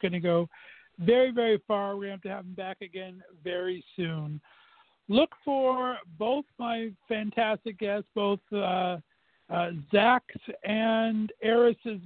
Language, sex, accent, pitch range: English, male, American, 185-230 Hz